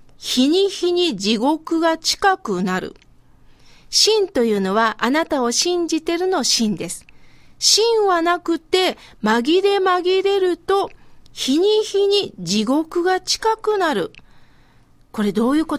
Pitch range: 250-370 Hz